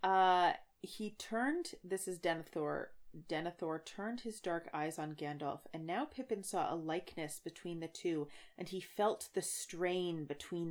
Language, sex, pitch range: English, female, 165-215 Hz